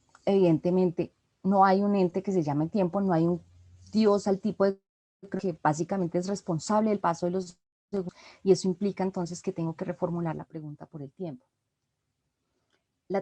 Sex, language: female, Spanish